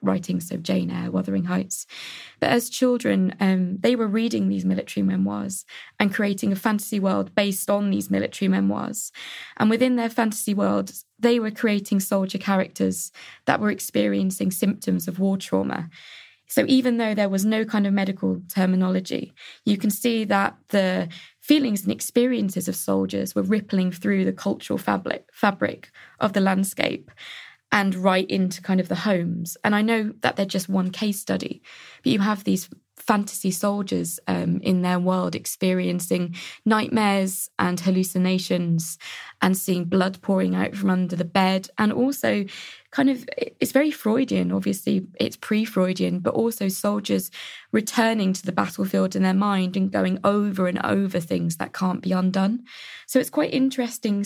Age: 20-39